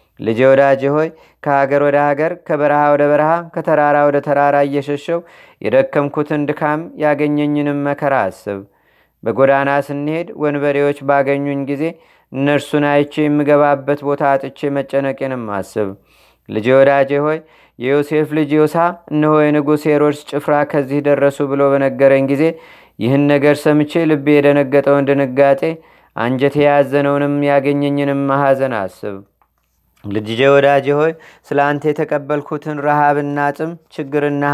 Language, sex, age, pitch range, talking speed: Amharic, male, 30-49, 140-150 Hz, 105 wpm